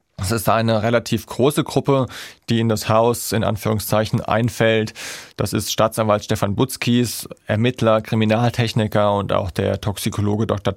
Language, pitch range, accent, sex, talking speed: German, 105-120 Hz, German, male, 140 wpm